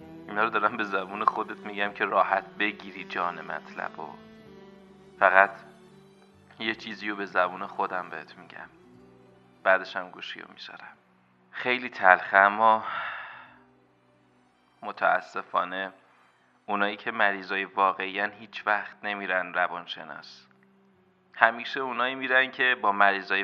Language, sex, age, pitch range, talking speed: Persian, male, 30-49, 100-125 Hz, 110 wpm